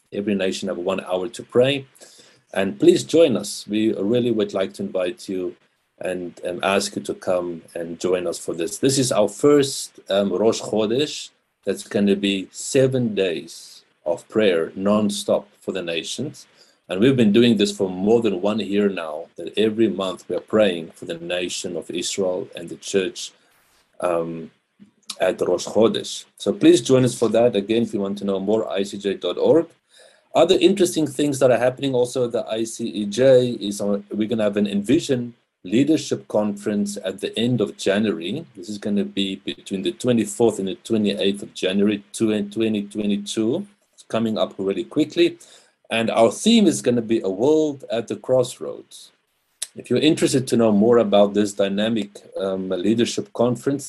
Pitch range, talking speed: 100-125 Hz, 175 wpm